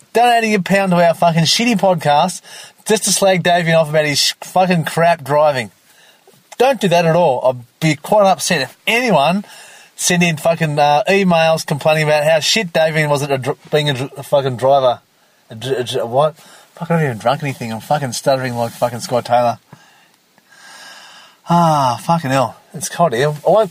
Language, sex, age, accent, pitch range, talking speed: English, male, 30-49, Australian, 135-195 Hz, 190 wpm